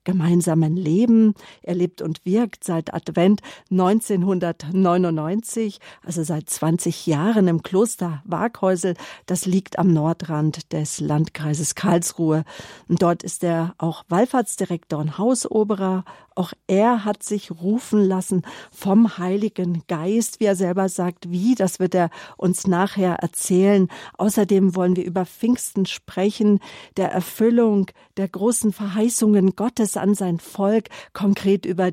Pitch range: 175-205 Hz